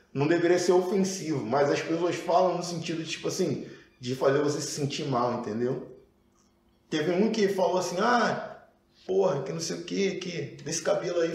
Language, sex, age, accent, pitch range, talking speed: Portuguese, male, 20-39, Brazilian, 130-180 Hz, 185 wpm